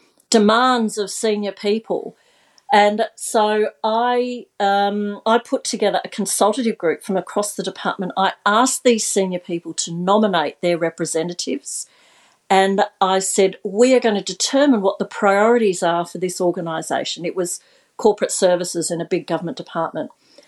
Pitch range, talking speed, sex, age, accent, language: 185-240 Hz, 150 wpm, female, 50-69, Australian, English